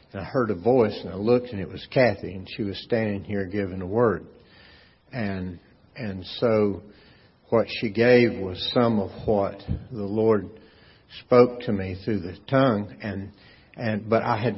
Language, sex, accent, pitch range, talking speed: English, male, American, 95-115 Hz, 175 wpm